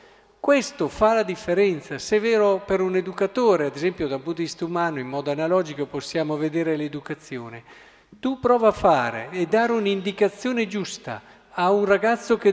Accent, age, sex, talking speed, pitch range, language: native, 50-69, male, 160 wpm, 145-205 Hz, Italian